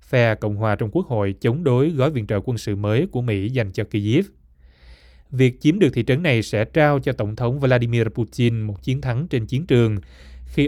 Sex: male